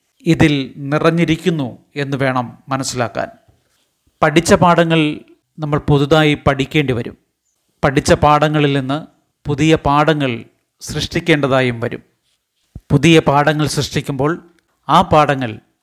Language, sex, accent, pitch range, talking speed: Malayalam, male, native, 140-160 Hz, 85 wpm